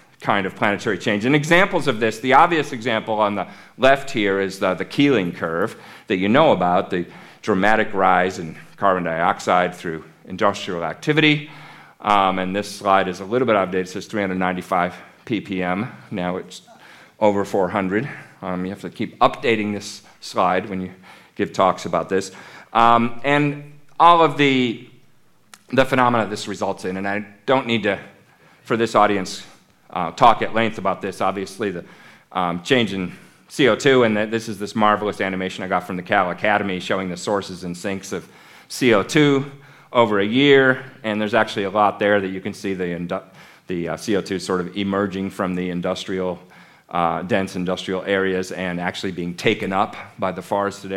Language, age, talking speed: English, 40-59, 175 wpm